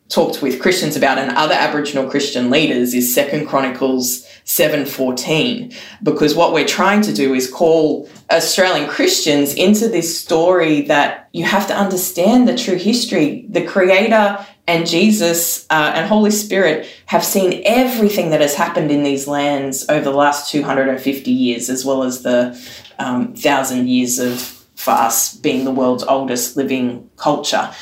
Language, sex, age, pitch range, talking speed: English, female, 20-39, 145-190 Hz, 155 wpm